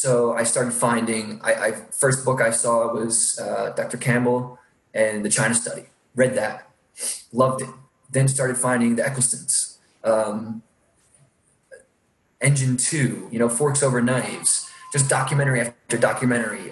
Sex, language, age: male, English, 20-39